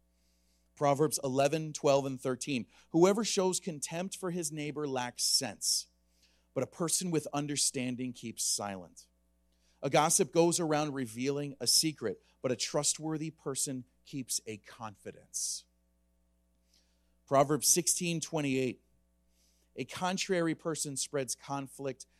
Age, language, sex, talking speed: 40-59, English, male, 115 wpm